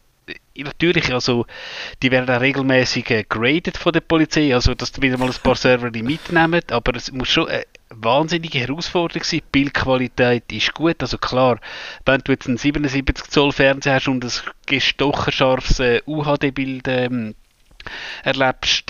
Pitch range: 125-145 Hz